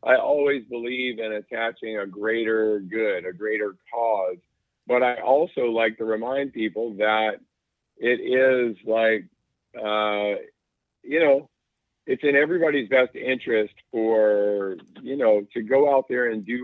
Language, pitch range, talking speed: English, 105-125 Hz, 140 wpm